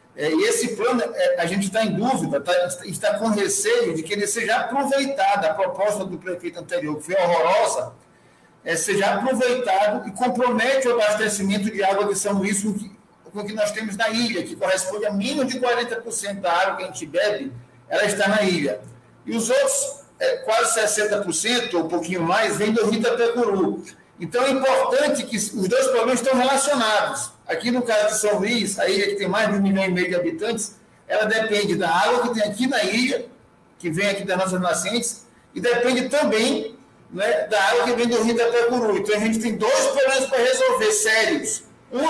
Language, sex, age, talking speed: Portuguese, male, 50-69, 190 wpm